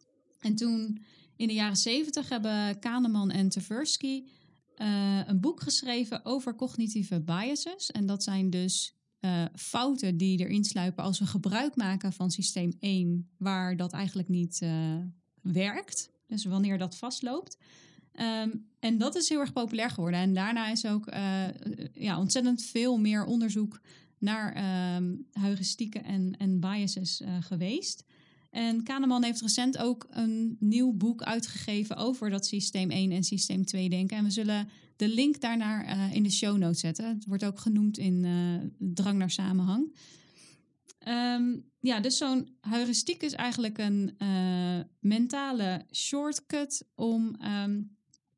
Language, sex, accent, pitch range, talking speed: Dutch, female, Dutch, 190-235 Hz, 150 wpm